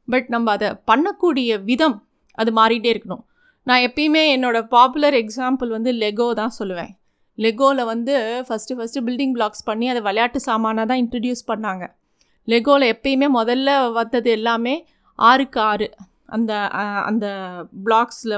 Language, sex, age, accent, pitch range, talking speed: Tamil, female, 30-49, native, 225-275 Hz, 130 wpm